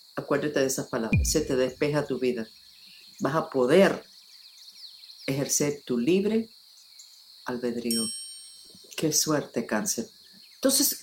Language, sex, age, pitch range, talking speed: English, female, 50-69, 155-220 Hz, 110 wpm